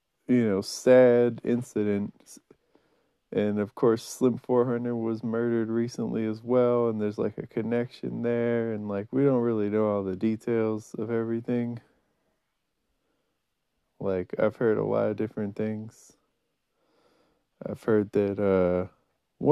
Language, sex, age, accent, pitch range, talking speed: English, male, 20-39, American, 105-125 Hz, 130 wpm